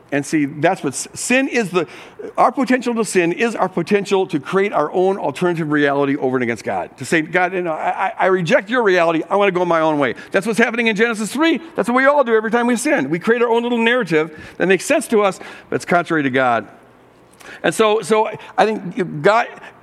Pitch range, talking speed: 170-250 Hz, 235 wpm